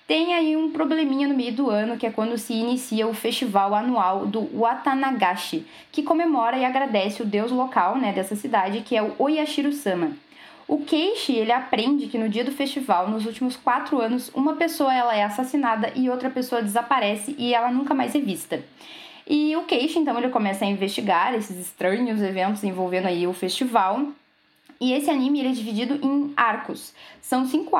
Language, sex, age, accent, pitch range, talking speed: Portuguese, female, 10-29, Brazilian, 205-275 Hz, 180 wpm